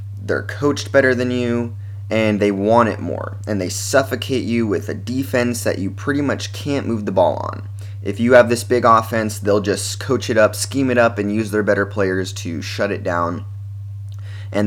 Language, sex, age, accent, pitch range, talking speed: English, male, 20-39, American, 100-115 Hz, 205 wpm